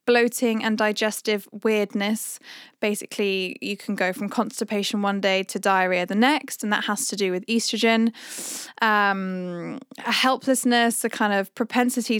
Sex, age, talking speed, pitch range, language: female, 10-29, 145 wpm, 205-250 Hz, English